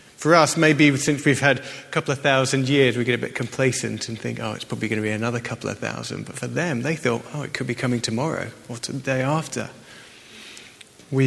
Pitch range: 120-150 Hz